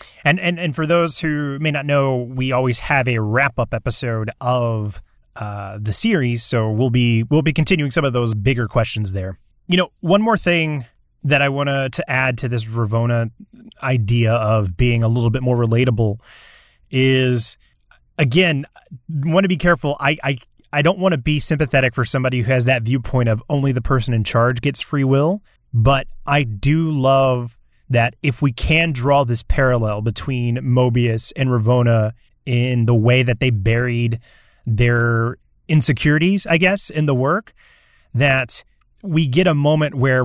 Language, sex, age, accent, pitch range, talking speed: English, male, 30-49, American, 120-150 Hz, 175 wpm